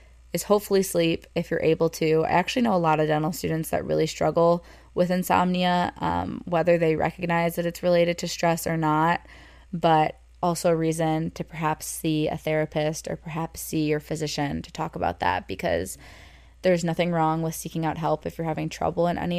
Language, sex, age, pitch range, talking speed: English, female, 20-39, 160-185 Hz, 195 wpm